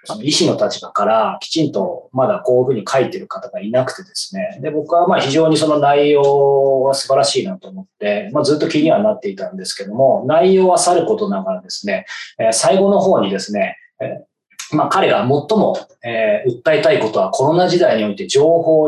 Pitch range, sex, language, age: 135-215 Hz, male, Japanese, 20-39